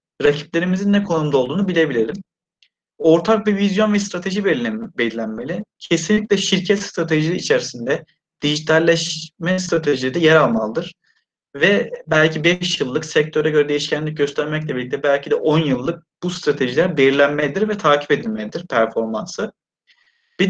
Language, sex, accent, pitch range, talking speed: Turkish, male, native, 145-185 Hz, 120 wpm